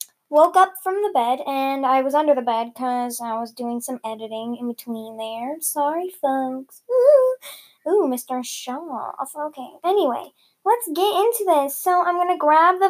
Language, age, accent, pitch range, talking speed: English, 10-29, American, 255-355 Hz, 175 wpm